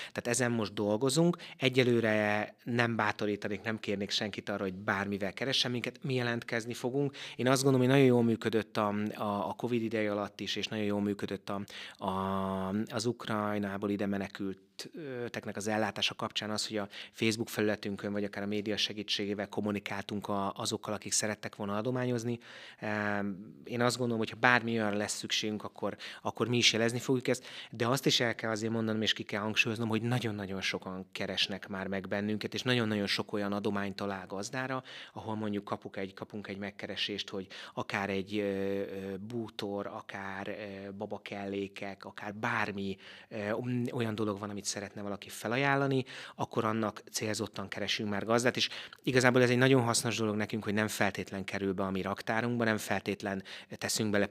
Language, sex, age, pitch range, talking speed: Hungarian, male, 30-49, 100-115 Hz, 165 wpm